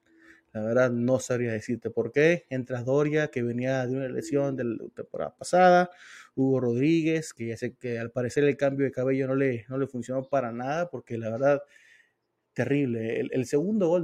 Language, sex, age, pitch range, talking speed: Spanish, male, 30-49, 120-145 Hz, 190 wpm